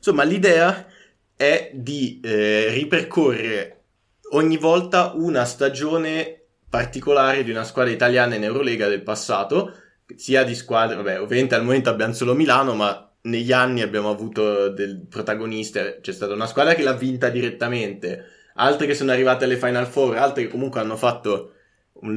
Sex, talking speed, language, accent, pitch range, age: male, 155 wpm, Italian, native, 110-130 Hz, 20-39